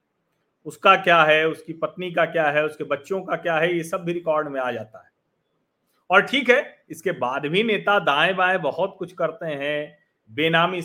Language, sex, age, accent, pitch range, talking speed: Hindi, male, 40-59, native, 150-195 Hz, 195 wpm